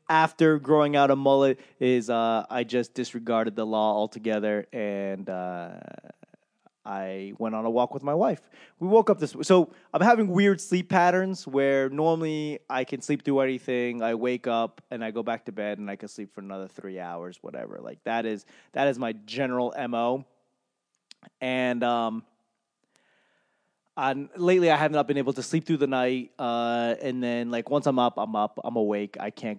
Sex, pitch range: male, 110-145 Hz